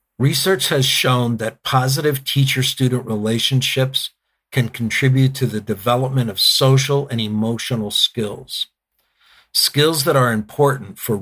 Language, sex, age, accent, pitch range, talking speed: English, male, 50-69, American, 115-135 Hz, 120 wpm